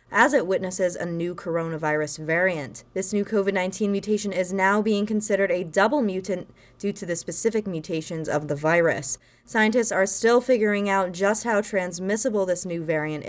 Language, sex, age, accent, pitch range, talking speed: English, female, 20-39, American, 170-210 Hz, 165 wpm